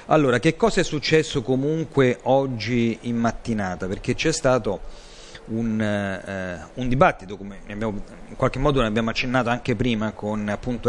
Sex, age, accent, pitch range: male, 40-59, native, 110-135 Hz